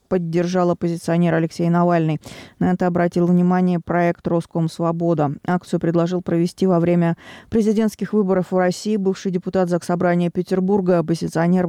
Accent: native